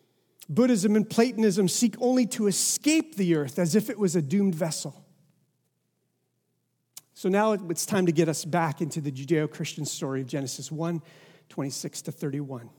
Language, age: English, 40-59